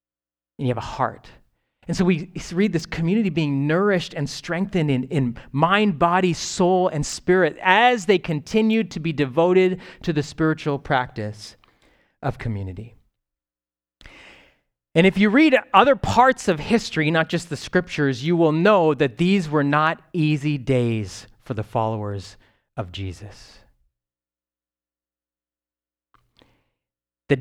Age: 30-49